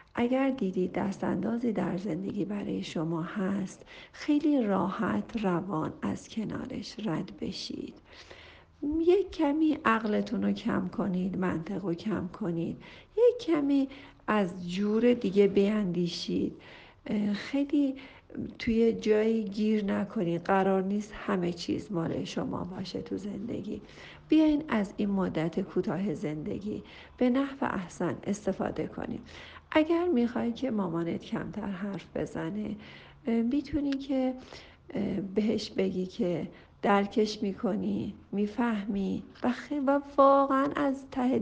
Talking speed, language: 110 wpm, Persian